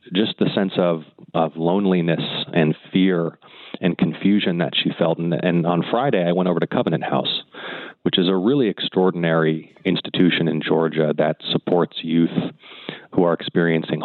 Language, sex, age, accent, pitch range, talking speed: English, male, 30-49, American, 80-90 Hz, 160 wpm